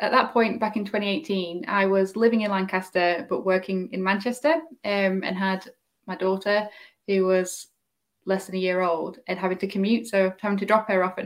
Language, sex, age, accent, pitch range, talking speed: English, female, 10-29, British, 180-220 Hz, 205 wpm